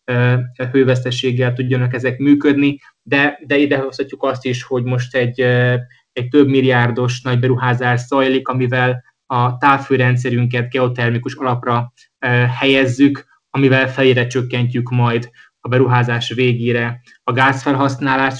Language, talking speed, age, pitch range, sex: Hungarian, 110 wpm, 20-39, 125-135 Hz, male